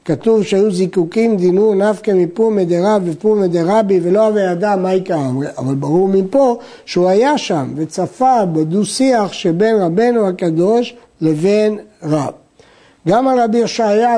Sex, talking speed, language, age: male, 140 wpm, Hebrew, 60-79